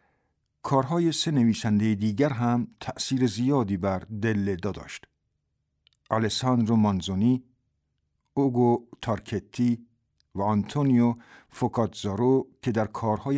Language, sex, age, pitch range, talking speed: Persian, male, 50-69, 100-120 Hz, 95 wpm